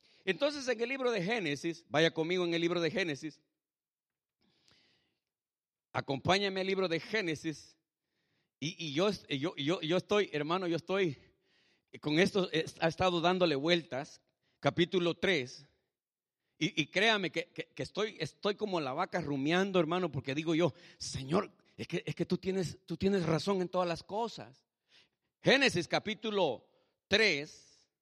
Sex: male